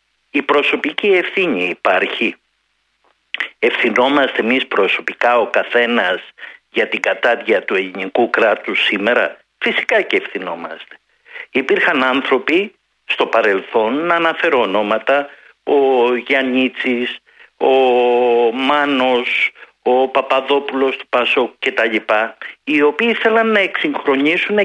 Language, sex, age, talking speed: Greek, male, 50-69, 100 wpm